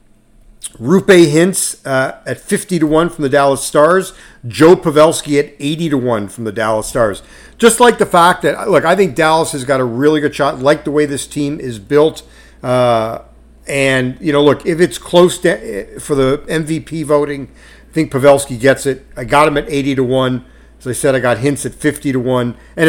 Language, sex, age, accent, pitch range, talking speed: English, male, 50-69, American, 120-150 Hz, 210 wpm